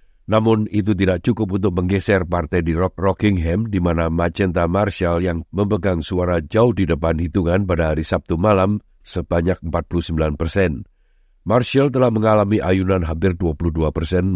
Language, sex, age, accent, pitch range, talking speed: Indonesian, male, 50-69, native, 85-105 Hz, 135 wpm